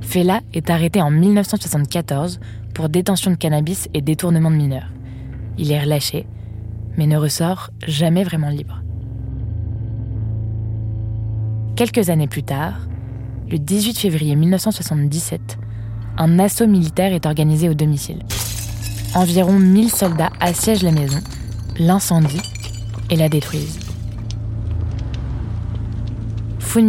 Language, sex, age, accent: French, female, 20-39, French